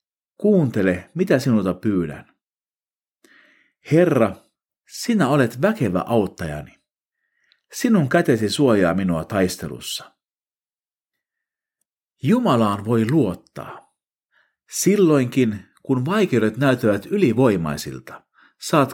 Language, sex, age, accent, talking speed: Finnish, male, 50-69, native, 75 wpm